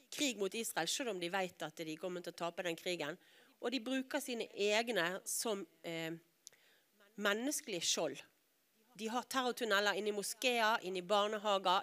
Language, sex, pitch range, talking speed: English, female, 175-230 Hz, 155 wpm